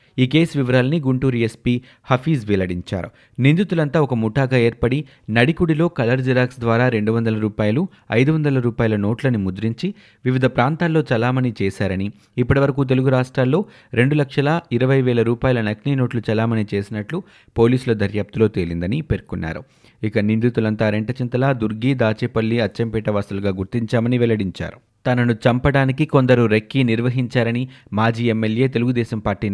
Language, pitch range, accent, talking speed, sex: Telugu, 105-130 Hz, native, 120 wpm, male